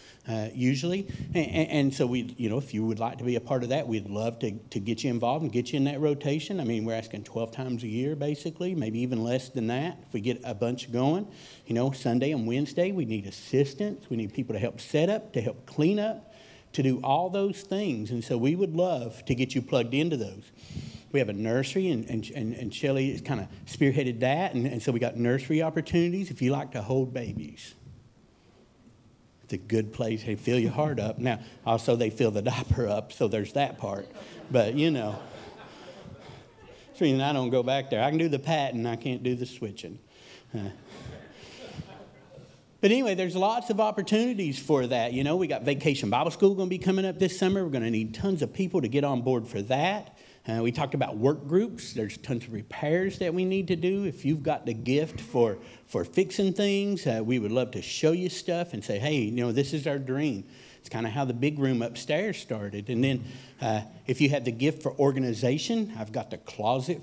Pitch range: 115-155 Hz